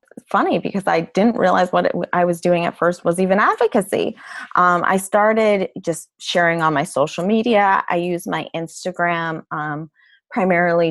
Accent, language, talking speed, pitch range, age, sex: American, English, 170 wpm, 160-200 Hz, 20-39, female